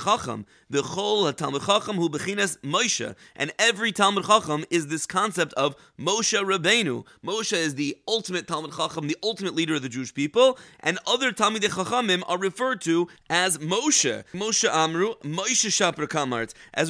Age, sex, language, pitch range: 30-49, male, English, 160-210 Hz